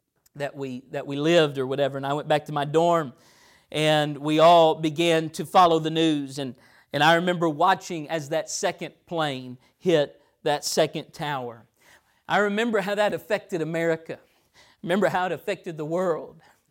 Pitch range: 150-180 Hz